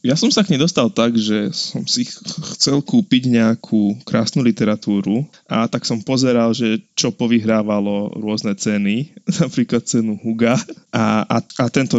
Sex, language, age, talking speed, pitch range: male, Slovak, 20-39, 155 wpm, 105-135 Hz